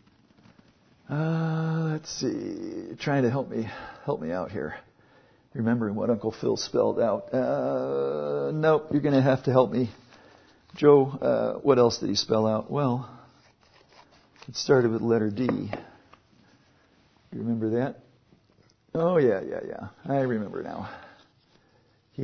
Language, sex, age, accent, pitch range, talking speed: English, male, 60-79, American, 115-145 Hz, 140 wpm